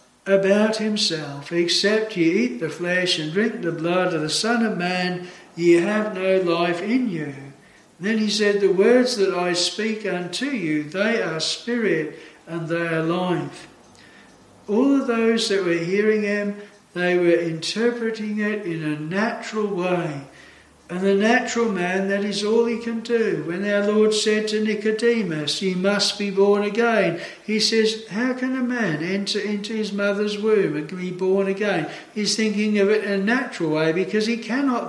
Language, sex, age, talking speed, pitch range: English, male, 60-79, 175 wpm, 180-220 Hz